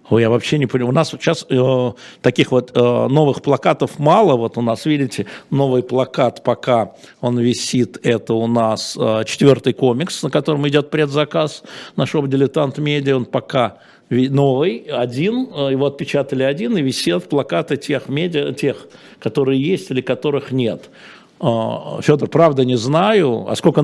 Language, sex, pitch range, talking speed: Russian, male, 120-150 Hz, 150 wpm